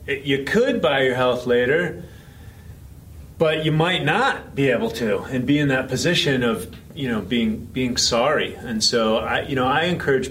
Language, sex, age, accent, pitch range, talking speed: English, male, 30-49, American, 115-145 Hz, 180 wpm